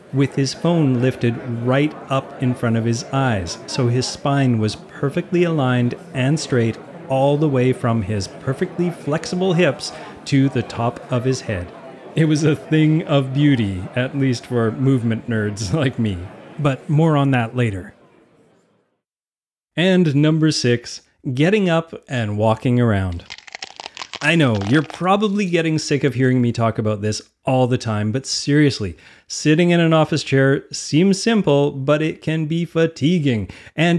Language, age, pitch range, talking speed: English, 30-49, 120-155 Hz, 155 wpm